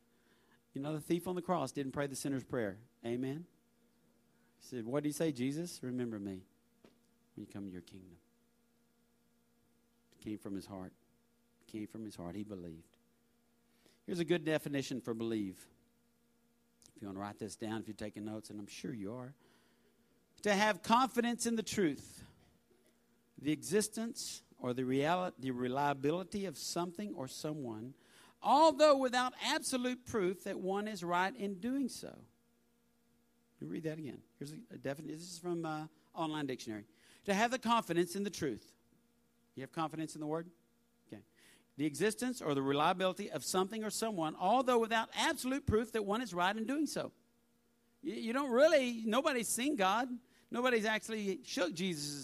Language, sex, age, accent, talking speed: English, male, 50-69, American, 170 wpm